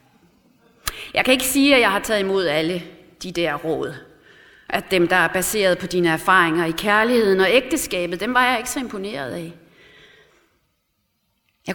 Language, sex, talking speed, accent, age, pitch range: English, female, 170 wpm, Danish, 30-49, 175-225 Hz